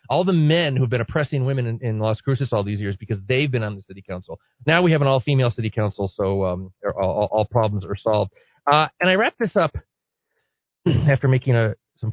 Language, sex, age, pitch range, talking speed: English, male, 40-59, 110-135 Hz, 225 wpm